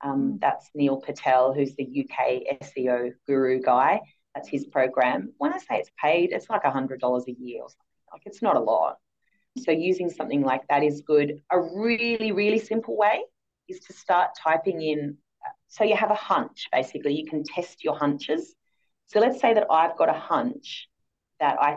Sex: female